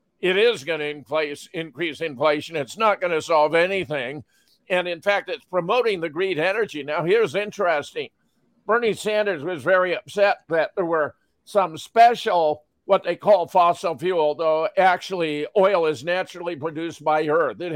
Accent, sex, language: American, male, English